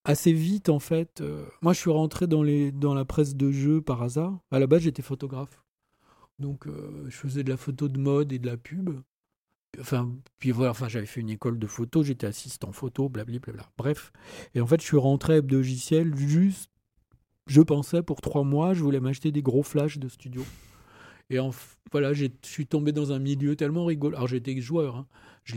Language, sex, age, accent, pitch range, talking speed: French, male, 40-59, French, 125-150 Hz, 210 wpm